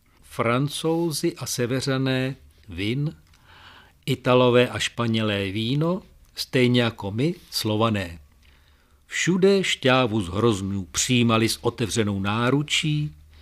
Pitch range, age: 95-130 Hz, 50-69